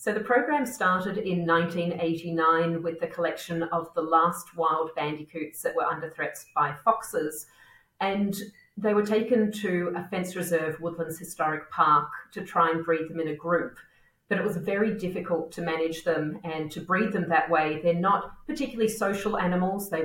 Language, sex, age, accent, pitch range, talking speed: English, female, 40-59, Australian, 165-205 Hz, 175 wpm